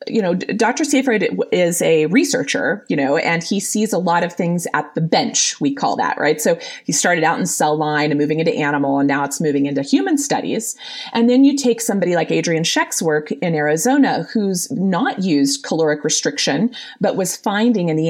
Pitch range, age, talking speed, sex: 155-245 Hz, 30-49, 205 wpm, female